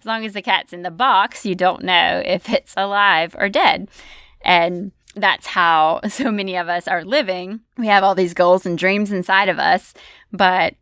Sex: female